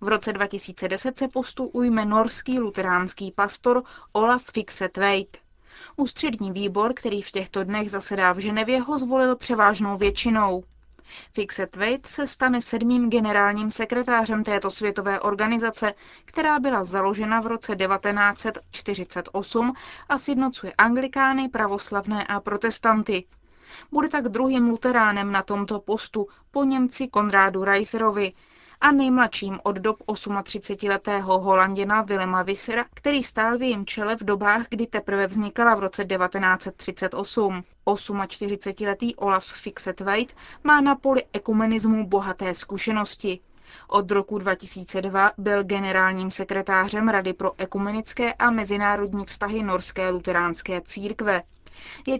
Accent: native